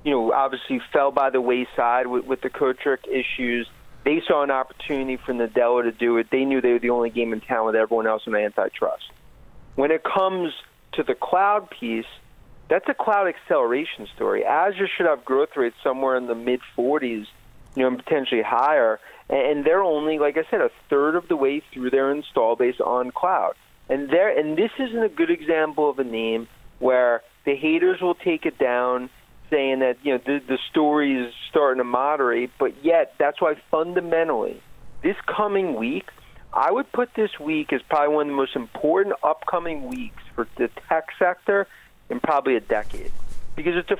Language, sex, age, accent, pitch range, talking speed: English, male, 40-59, American, 125-175 Hz, 195 wpm